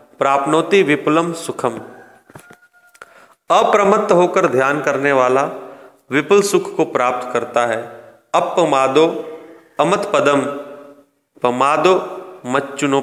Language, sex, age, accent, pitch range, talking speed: English, male, 40-59, Indian, 140-185 Hz, 85 wpm